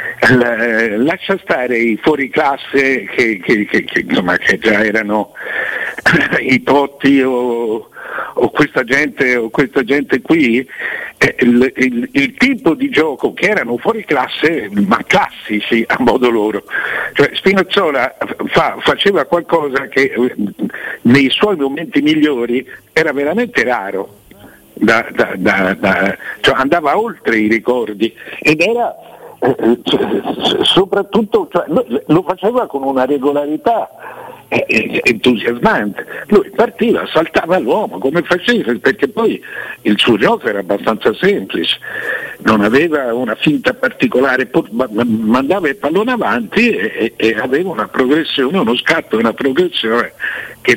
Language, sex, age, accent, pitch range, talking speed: Italian, male, 60-79, native, 120-200 Hz, 120 wpm